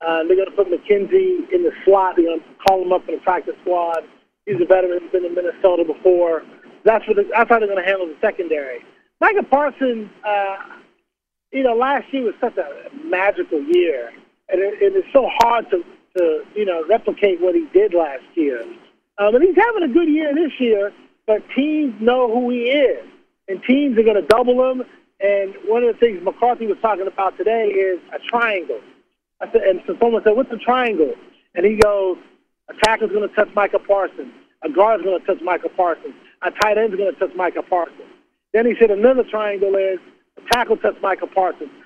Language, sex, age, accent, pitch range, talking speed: English, male, 40-59, American, 195-280 Hz, 210 wpm